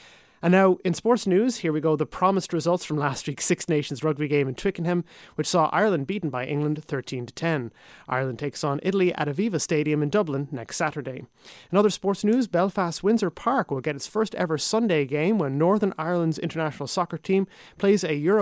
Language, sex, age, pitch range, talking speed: English, male, 30-49, 145-185 Hz, 200 wpm